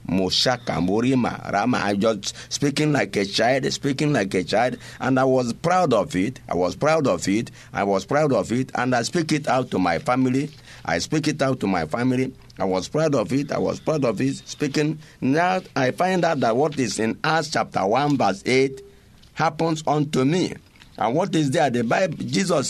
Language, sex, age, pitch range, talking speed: English, male, 50-69, 120-160 Hz, 200 wpm